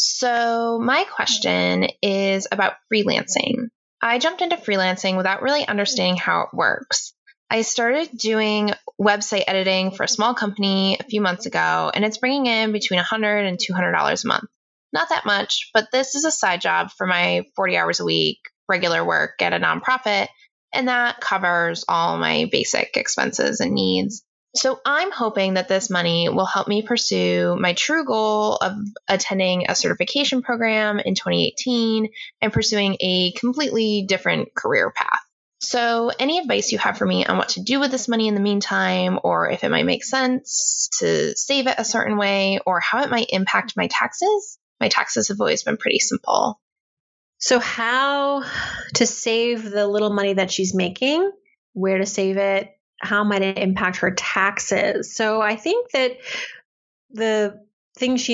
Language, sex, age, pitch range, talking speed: English, female, 20-39, 190-250 Hz, 170 wpm